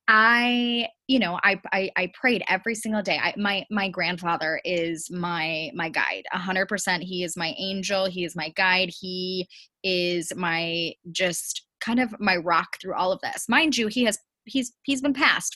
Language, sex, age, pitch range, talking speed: English, female, 20-39, 185-220 Hz, 190 wpm